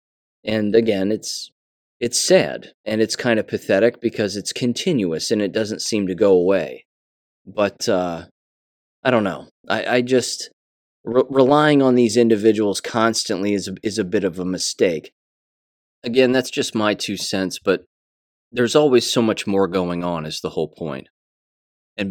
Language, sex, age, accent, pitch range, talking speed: English, male, 20-39, American, 90-110 Hz, 160 wpm